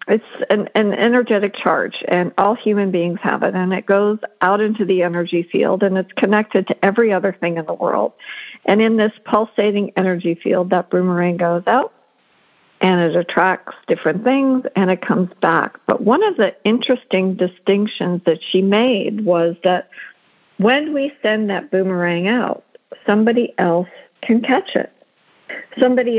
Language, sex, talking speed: English, female, 165 wpm